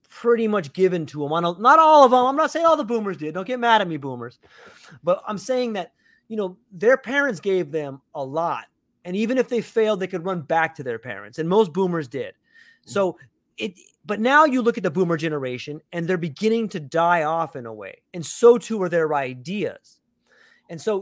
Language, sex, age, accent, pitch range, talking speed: English, male, 30-49, American, 160-230 Hz, 220 wpm